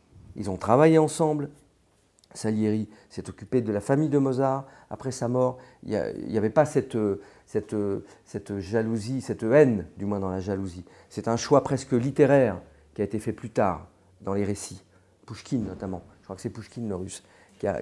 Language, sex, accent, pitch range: Chinese, male, French, 105-145 Hz